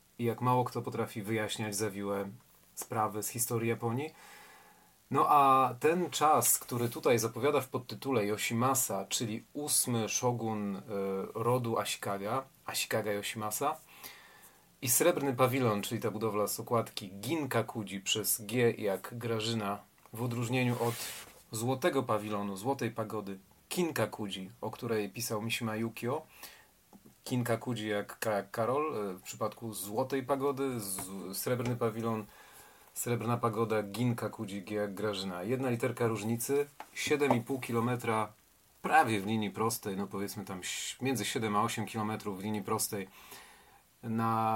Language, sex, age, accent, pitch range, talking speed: Polish, male, 30-49, native, 105-125 Hz, 120 wpm